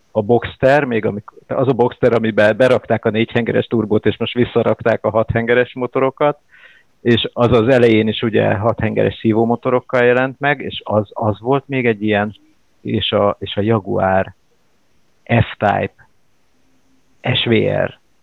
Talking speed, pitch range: 140 wpm, 105-120 Hz